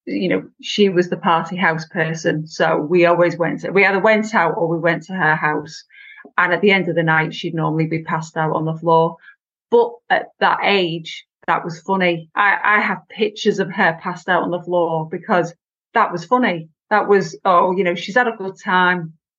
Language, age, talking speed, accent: English, 30-49, 215 wpm, British